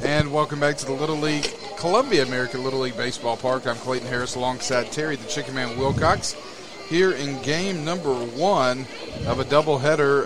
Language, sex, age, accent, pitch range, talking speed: English, male, 40-59, American, 125-150 Hz, 175 wpm